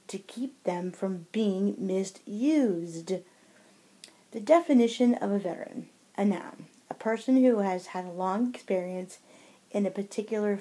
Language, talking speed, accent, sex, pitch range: English, 135 wpm, American, female, 185-215 Hz